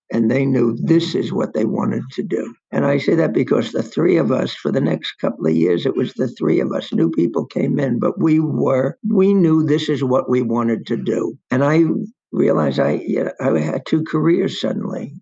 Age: 60-79